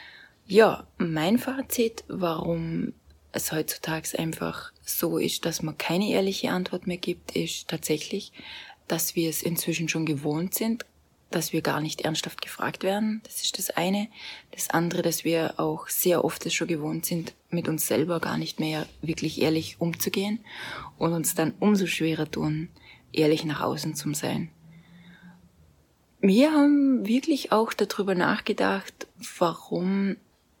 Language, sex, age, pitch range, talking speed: German, female, 20-39, 160-195 Hz, 145 wpm